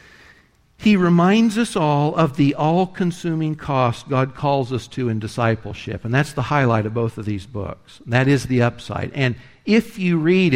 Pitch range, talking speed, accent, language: 125-155 Hz, 175 wpm, American, English